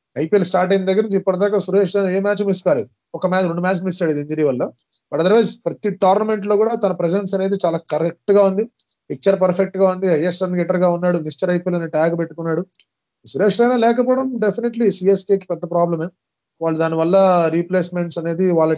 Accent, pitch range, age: native, 170-200 Hz, 20-39